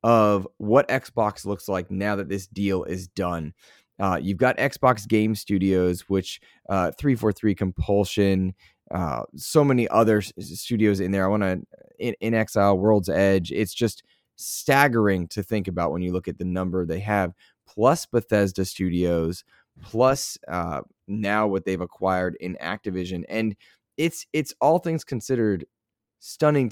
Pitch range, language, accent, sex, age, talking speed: 90-105 Hz, English, American, male, 20-39, 150 wpm